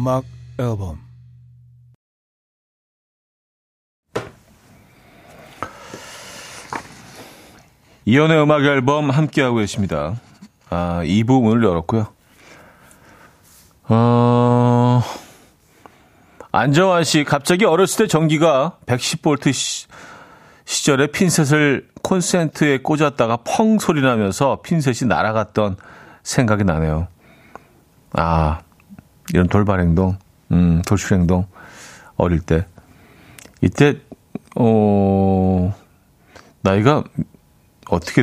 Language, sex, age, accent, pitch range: Korean, male, 40-59, native, 95-150 Hz